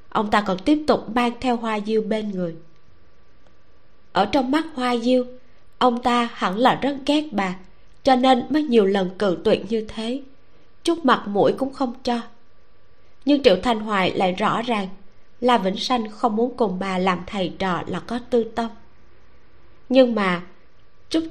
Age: 20-39